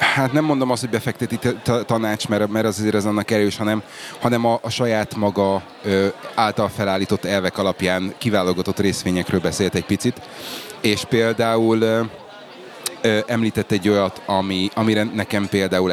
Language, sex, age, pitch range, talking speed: Hungarian, male, 30-49, 95-115 Hz, 160 wpm